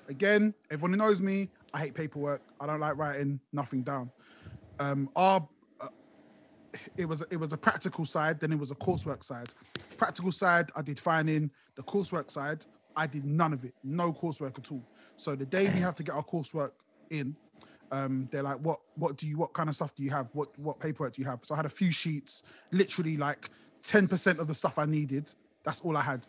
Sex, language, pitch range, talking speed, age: male, English, 145-200 Hz, 220 wpm, 20-39